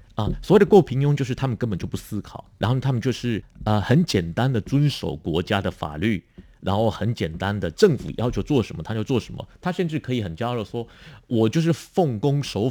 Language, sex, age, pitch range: Chinese, male, 50-69, 100-145 Hz